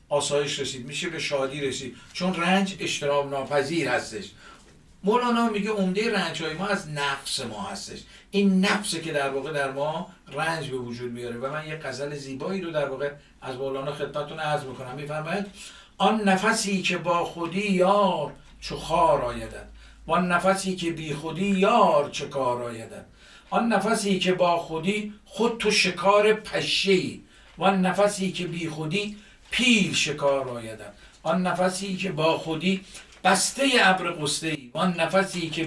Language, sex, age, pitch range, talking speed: Persian, male, 60-79, 145-190 Hz, 155 wpm